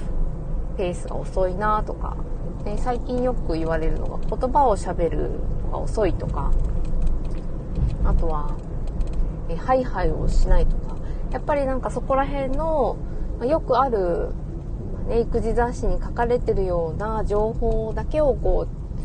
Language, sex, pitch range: Japanese, female, 160-240 Hz